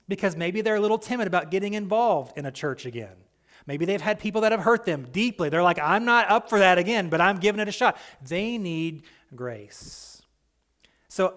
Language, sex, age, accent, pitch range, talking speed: English, male, 30-49, American, 135-190 Hz, 210 wpm